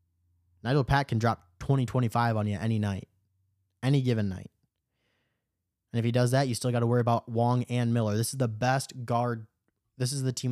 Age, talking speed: 20-39, 205 wpm